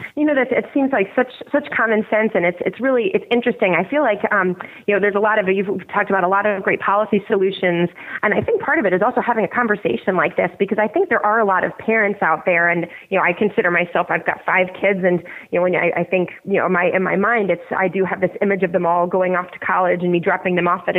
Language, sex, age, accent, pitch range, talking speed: English, female, 30-49, American, 185-240 Hz, 285 wpm